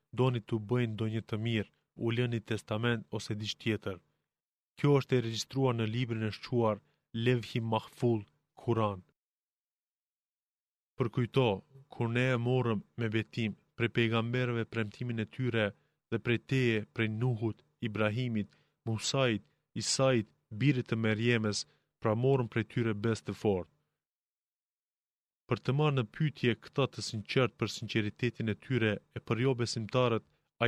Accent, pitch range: Turkish, 110-125 Hz